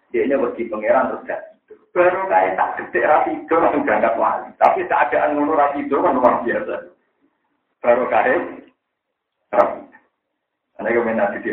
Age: 50-69